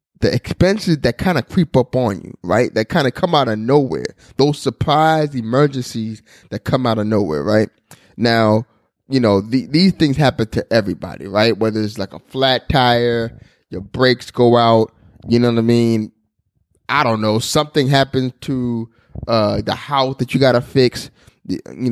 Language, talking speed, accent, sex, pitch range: English, 180 wpm, American, male, 110-135 Hz